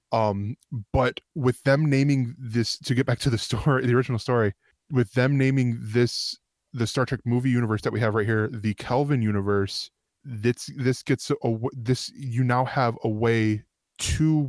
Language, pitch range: English, 110-125 Hz